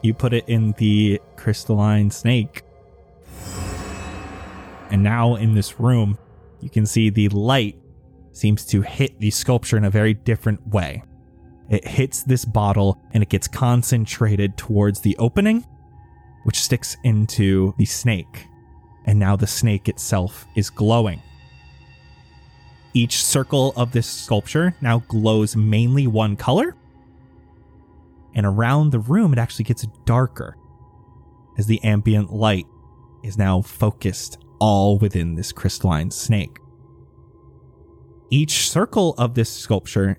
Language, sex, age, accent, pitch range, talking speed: English, male, 20-39, American, 95-120 Hz, 125 wpm